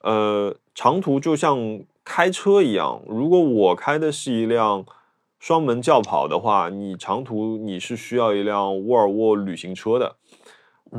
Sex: male